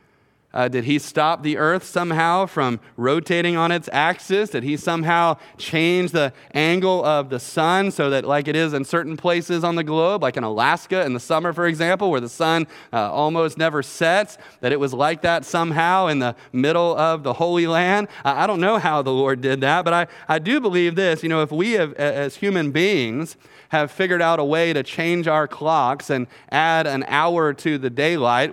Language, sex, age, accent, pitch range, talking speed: English, male, 30-49, American, 145-175 Hz, 205 wpm